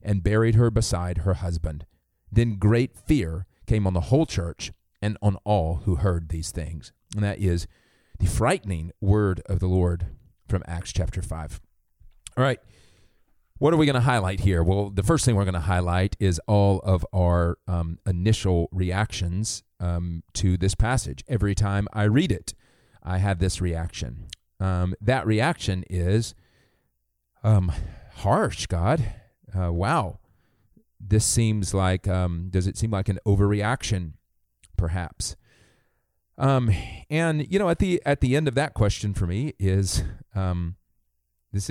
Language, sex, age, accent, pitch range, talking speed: English, male, 40-59, American, 85-110 Hz, 155 wpm